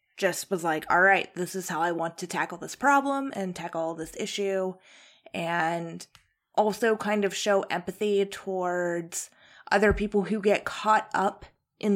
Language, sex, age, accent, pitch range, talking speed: English, female, 20-39, American, 175-205 Hz, 160 wpm